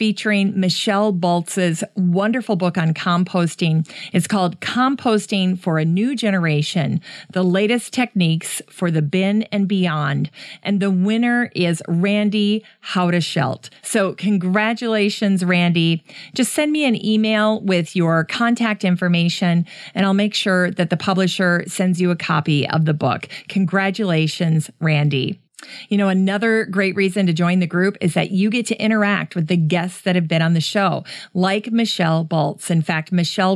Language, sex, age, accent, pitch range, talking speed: English, female, 40-59, American, 175-215 Hz, 155 wpm